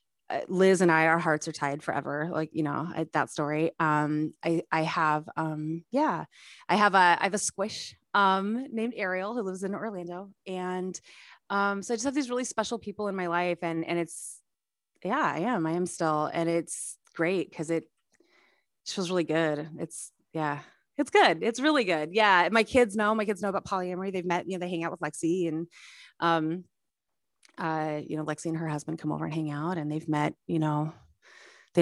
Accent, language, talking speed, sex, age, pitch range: American, English, 205 wpm, female, 30-49, 165-220 Hz